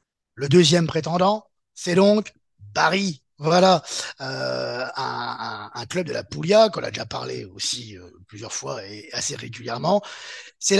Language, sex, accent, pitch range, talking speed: French, male, French, 145-200 Hz, 150 wpm